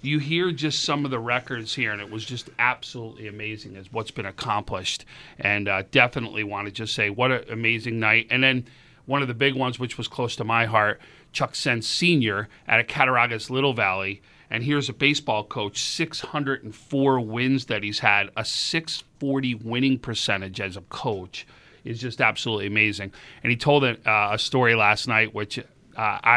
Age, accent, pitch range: 40-59, American, 110-135 Hz